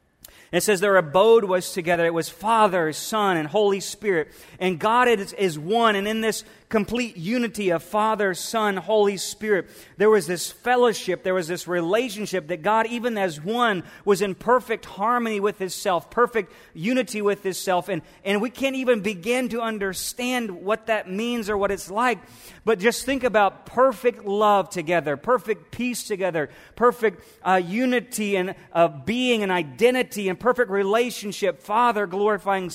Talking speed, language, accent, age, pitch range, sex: 165 wpm, English, American, 30-49, 180-230 Hz, male